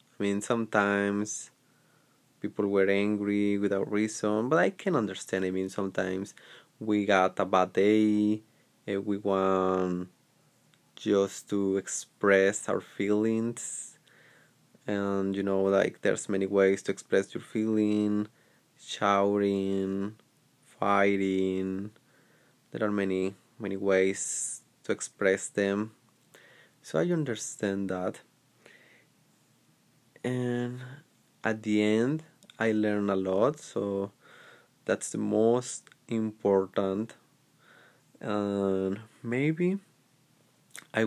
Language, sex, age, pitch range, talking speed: English, male, 20-39, 100-110 Hz, 100 wpm